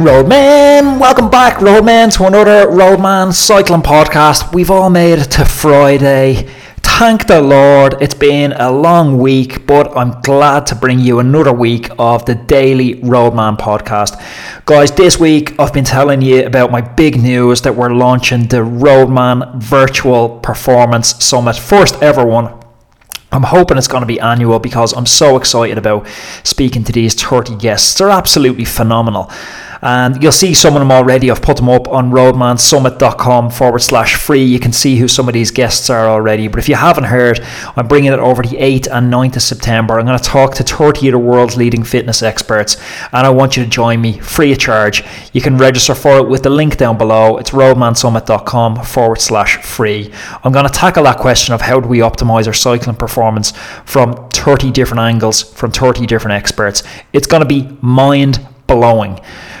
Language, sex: English, male